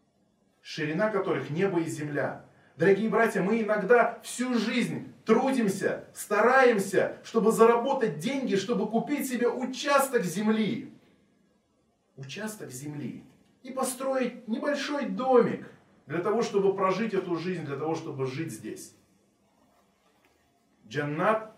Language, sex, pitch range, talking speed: Russian, male, 175-230 Hz, 110 wpm